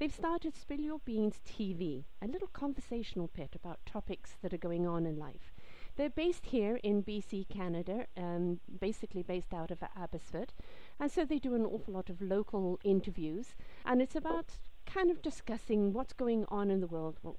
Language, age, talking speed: English, 50-69, 185 wpm